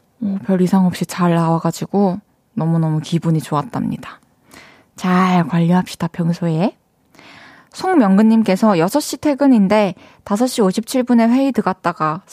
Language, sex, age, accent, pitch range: Korean, female, 20-39, native, 180-240 Hz